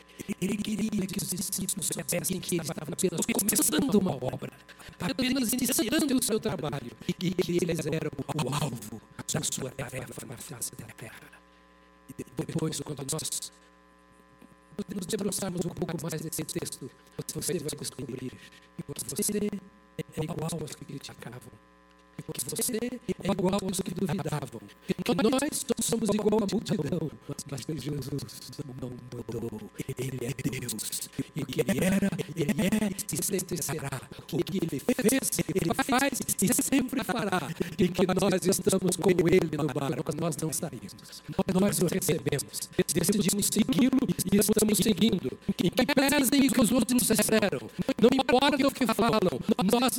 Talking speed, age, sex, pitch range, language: 160 wpm, 50-69, male, 150-215 Hz, Portuguese